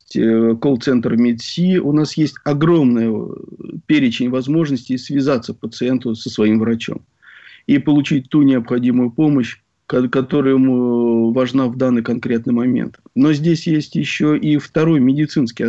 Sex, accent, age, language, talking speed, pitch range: male, native, 40-59, Russian, 125 wpm, 125-150 Hz